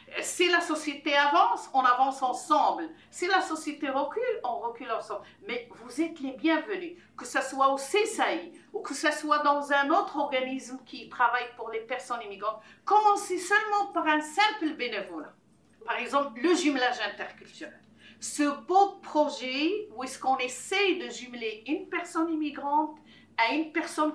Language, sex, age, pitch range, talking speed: French, female, 50-69, 260-365 Hz, 160 wpm